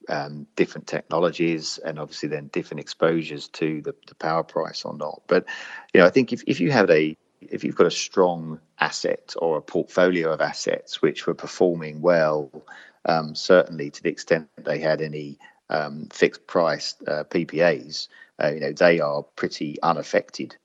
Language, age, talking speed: English, 40-59, 175 wpm